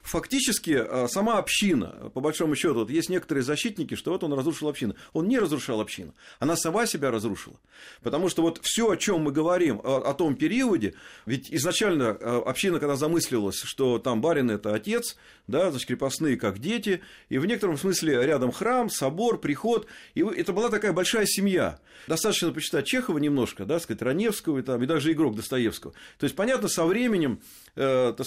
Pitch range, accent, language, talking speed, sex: 130-190 Hz, native, Russian, 175 wpm, male